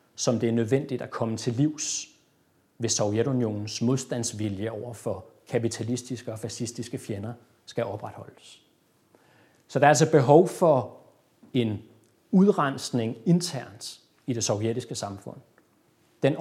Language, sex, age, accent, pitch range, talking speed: Danish, male, 30-49, native, 115-135 Hz, 120 wpm